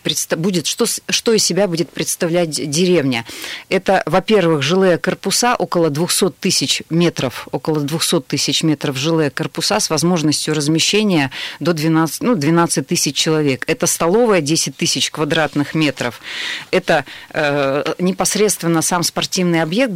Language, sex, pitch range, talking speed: Russian, female, 150-180 Hz, 130 wpm